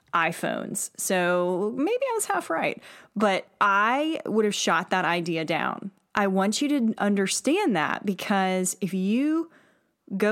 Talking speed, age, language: 145 wpm, 20-39, English